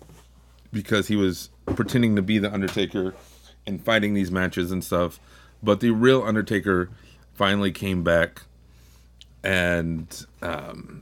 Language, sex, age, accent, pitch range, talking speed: English, male, 30-49, American, 65-100 Hz, 120 wpm